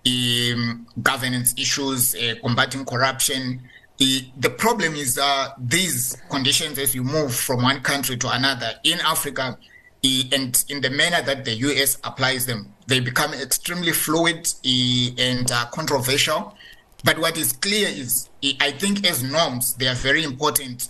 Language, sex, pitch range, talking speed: English, male, 125-155 Hz, 155 wpm